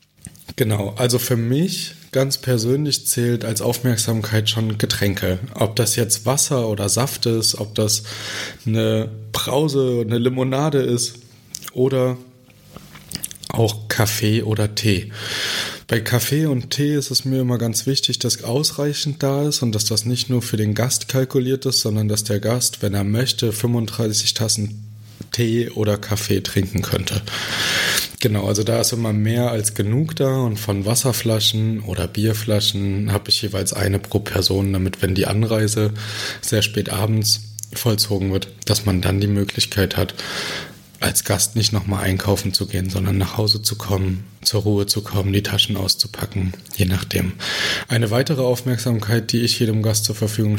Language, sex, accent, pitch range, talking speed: German, male, German, 105-120 Hz, 160 wpm